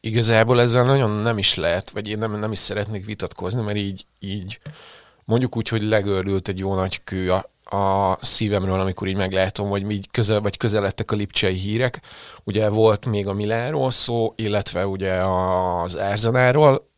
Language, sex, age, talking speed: Hungarian, male, 30-49, 165 wpm